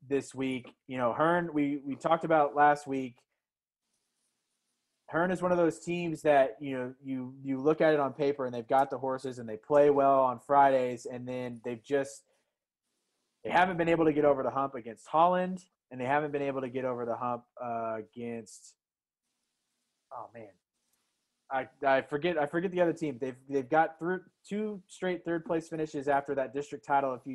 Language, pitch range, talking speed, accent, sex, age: English, 125-150 Hz, 195 wpm, American, male, 20-39